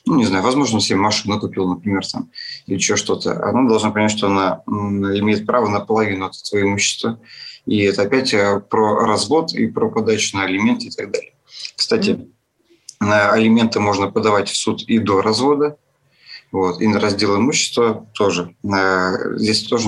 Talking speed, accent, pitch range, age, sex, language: 165 wpm, native, 100-120 Hz, 30-49, male, Russian